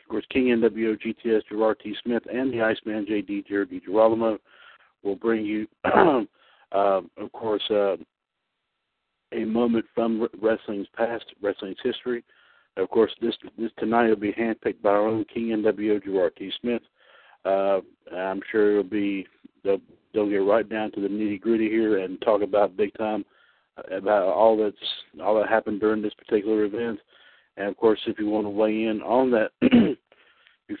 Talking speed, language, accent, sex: 170 wpm, English, American, male